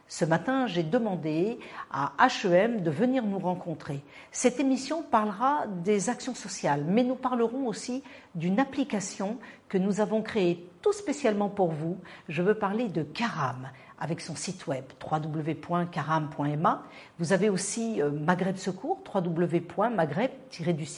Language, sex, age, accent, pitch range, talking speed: French, female, 50-69, French, 165-230 Hz, 130 wpm